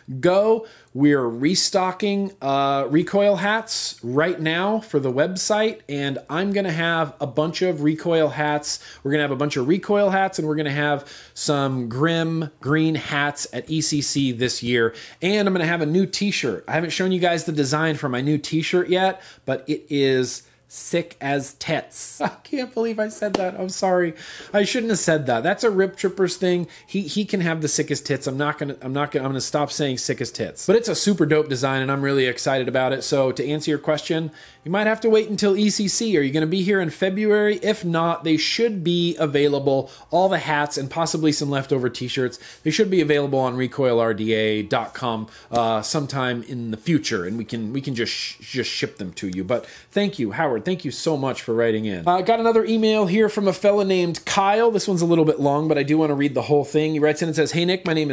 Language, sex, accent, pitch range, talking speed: English, male, American, 140-185 Hz, 230 wpm